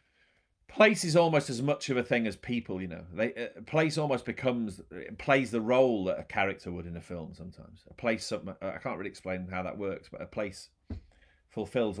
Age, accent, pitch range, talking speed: 30-49, British, 90-110 Hz, 210 wpm